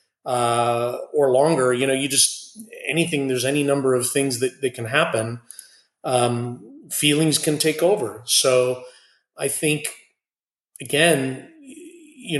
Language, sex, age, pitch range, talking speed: English, male, 30-49, 125-165 Hz, 130 wpm